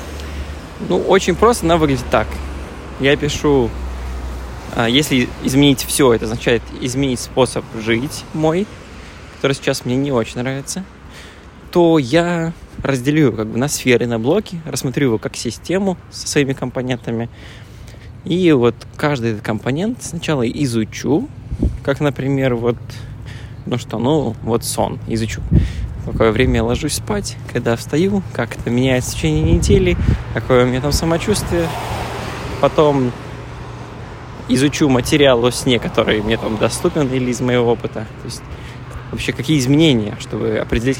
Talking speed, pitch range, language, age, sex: 135 wpm, 110-140 Hz, Russian, 20-39, male